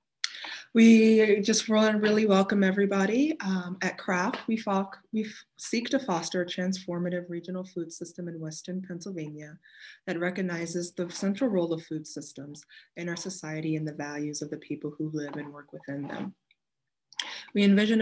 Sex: female